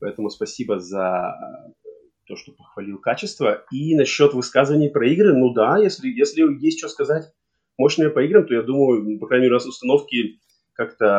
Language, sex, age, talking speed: Russian, male, 20-39, 170 wpm